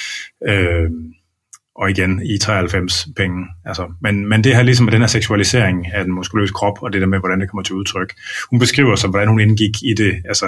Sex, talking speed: male, 220 wpm